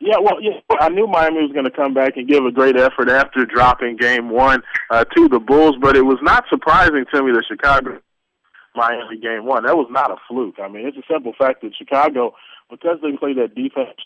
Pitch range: 120-135 Hz